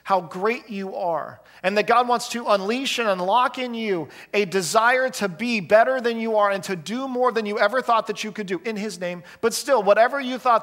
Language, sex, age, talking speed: English, male, 40-59, 235 wpm